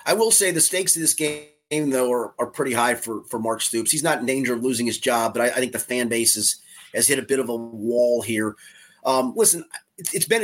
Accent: American